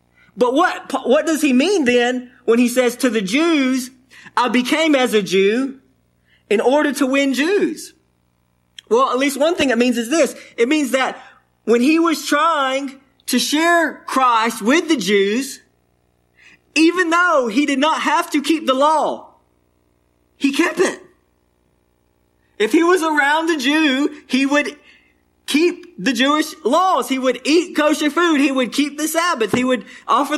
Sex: male